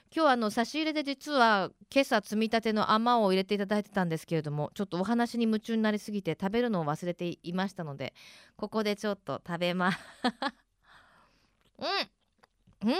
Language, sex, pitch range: Japanese, female, 170-240 Hz